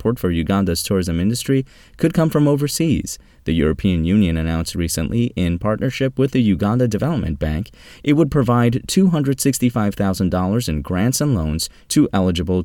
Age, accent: 20-39, American